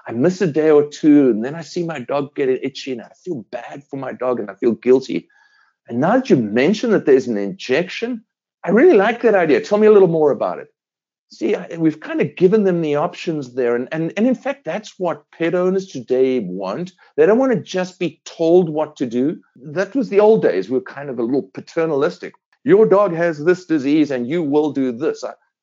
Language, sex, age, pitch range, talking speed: English, male, 50-69, 130-195 Hz, 235 wpm